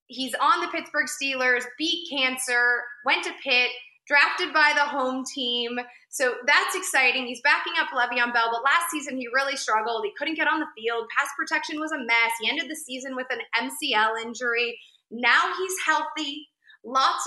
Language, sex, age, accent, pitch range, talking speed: English, female, 20-39, American, 235-295 Hz, 180 wpm